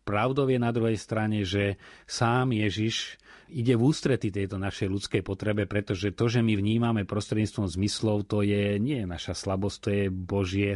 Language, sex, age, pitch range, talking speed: Slovak, male, 30-49, 95-115 Hz, 175 wpm